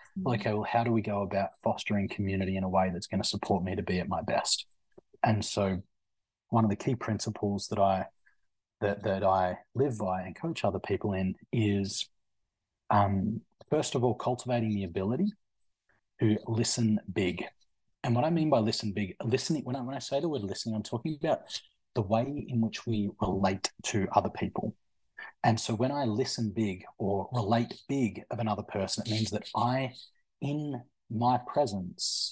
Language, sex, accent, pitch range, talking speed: English, male, Australian, 100-120 Hz, 185 wpm